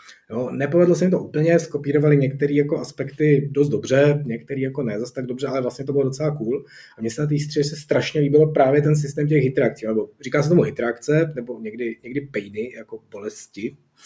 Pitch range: 120-150 Hz